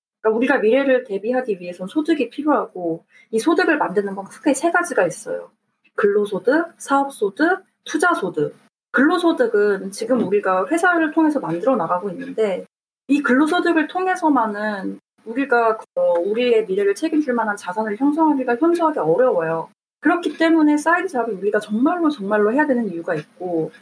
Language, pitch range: Korean, 210-320 Hz